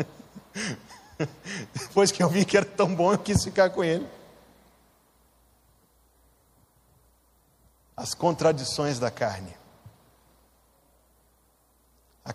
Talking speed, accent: 85 wpm, Brazilian